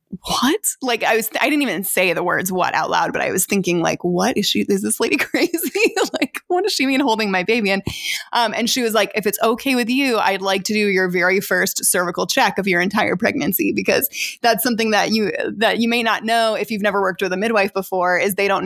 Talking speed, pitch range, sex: 255 wpm, 190-230 Hz, female